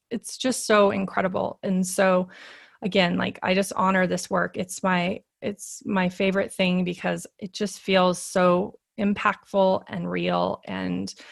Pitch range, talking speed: 180-205 Hz, 150 wpm